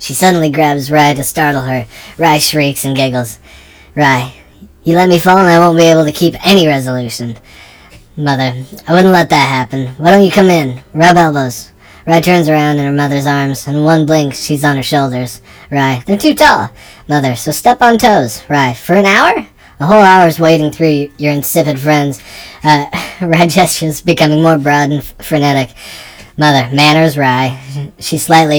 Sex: male